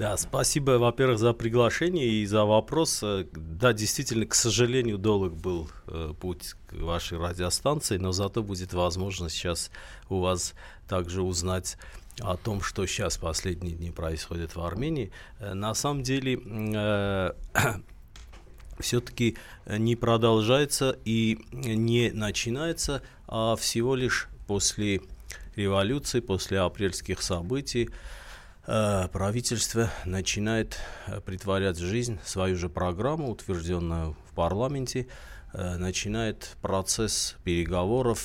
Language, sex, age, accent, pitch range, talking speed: Russian, male, 50-69, native, 90-110 Hz, 110 wpm